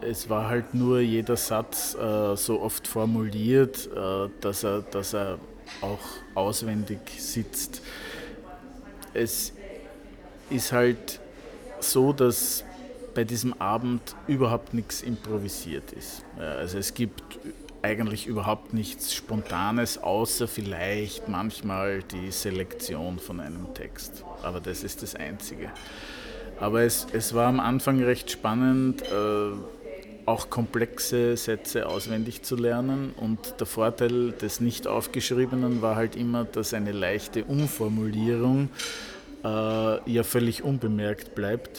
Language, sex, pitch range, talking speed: English, male, 105-120 Hz, 115 wpm